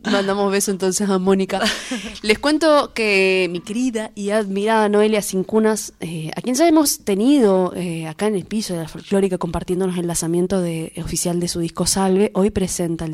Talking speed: 180 wpm